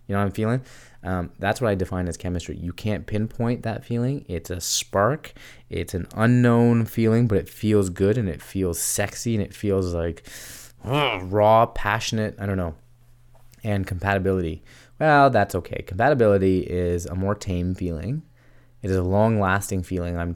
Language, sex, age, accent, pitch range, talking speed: English, male, 20-39, American, 90-115 Hz, 175 wpm